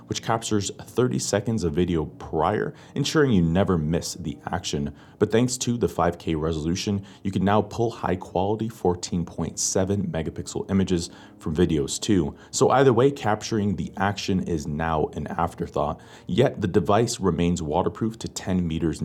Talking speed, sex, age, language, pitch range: 155 wpm, male, 30-49, English, 85-105 Hz